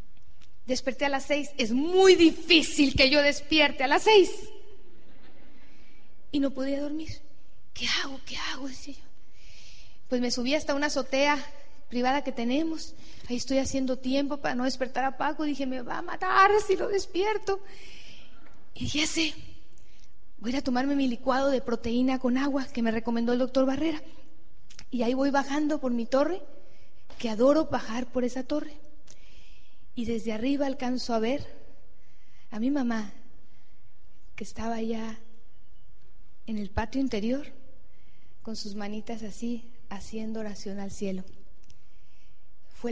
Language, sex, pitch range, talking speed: Spanish, female, 225-290 Hz, 145 wpm